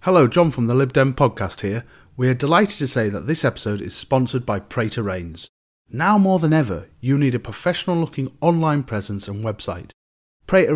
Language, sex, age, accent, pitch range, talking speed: English, male, 30-49, British, 105-145 Hz, 190 wpm